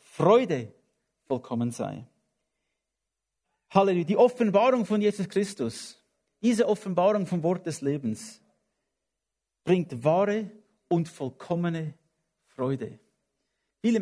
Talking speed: 90 wpm